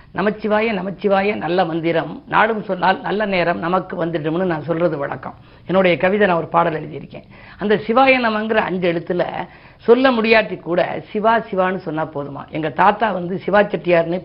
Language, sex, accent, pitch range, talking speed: Tamil, female, native, 170-215 Hz, 145 wpm